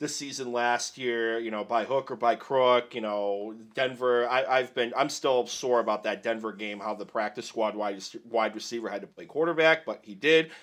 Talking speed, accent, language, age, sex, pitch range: 215 wpm, American, English, 30-49, male, 110-140 Hz